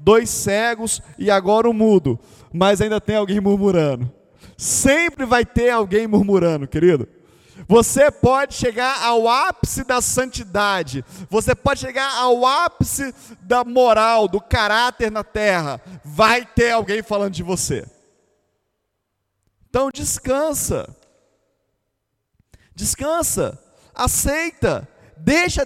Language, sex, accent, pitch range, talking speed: Portuguese, male, Brazilian, 160-255 Hz, 110 wpm